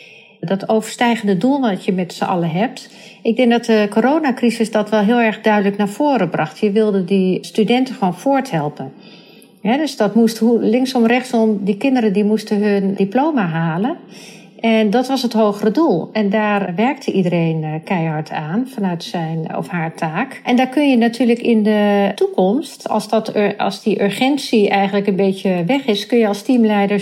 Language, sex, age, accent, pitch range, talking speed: Dutch, female, 40-59, Dutch, 190-230 Hz, 175 wpm